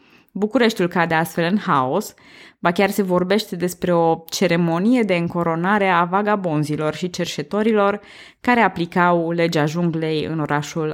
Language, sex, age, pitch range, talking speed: Romanian, female, 20-39, 155-215 Hz, 130 wpm